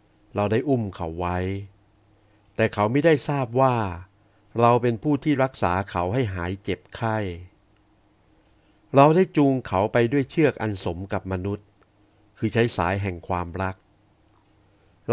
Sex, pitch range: male, 95-120 Hz